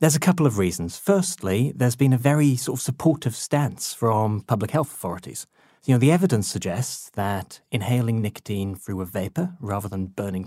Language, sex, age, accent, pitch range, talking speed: English, male, 30-49, British, 105-135 Hz, 185 wpm